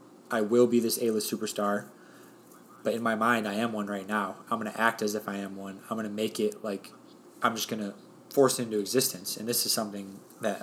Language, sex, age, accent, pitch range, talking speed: English, male, 20-39, American, 100-110 Hz, 235 wpm